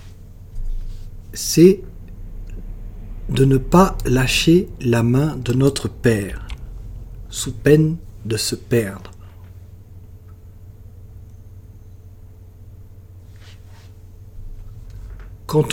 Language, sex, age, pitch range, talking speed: French, male, 60-79, 95-140 Hz, 60 wpm